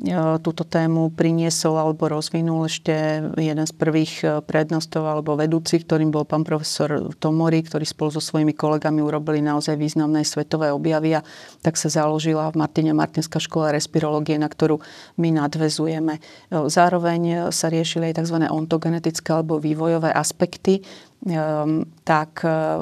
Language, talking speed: Slovak, 130 wpm